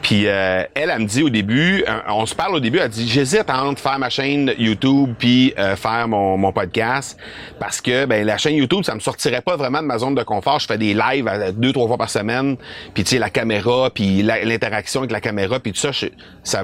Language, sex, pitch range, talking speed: French, male, 100-135 Hz, 250 wpm